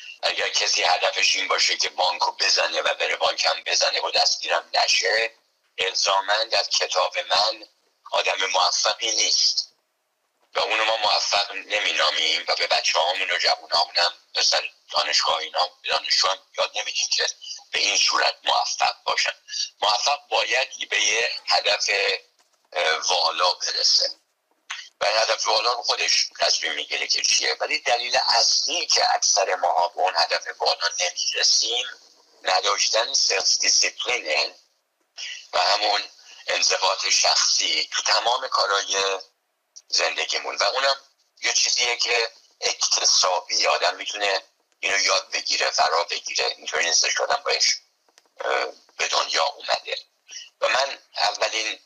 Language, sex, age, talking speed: Persian, male, 50-69, 125 wpm